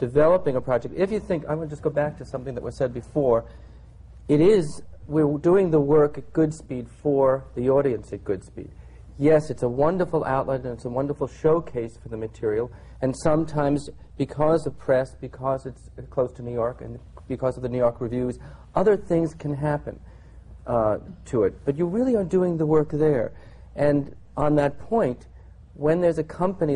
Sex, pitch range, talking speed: male, 125-160 Hz, 190 wpm